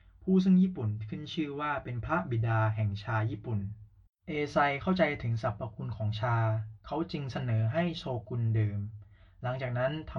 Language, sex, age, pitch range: Thai, male, 20-39, 110-135 Hz